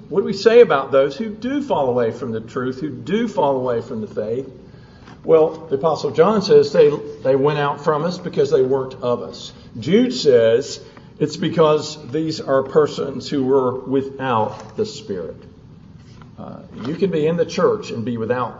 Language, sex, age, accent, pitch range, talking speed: English, male, 50-69, American, 135-205 Hz, 185 wpm